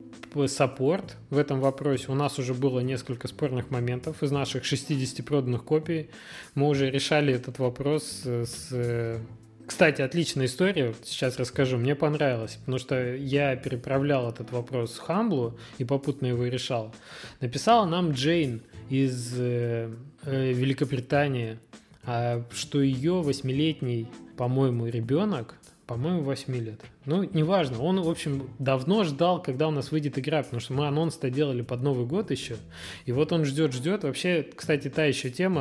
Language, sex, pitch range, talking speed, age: Russian, male, 125-155 Hz, 140 wpm, 20-39